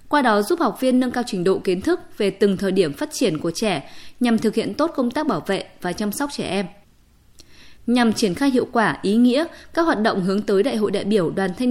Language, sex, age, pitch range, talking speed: Vietnamese, female, 20-39, 195-255 Hz, 255 wpm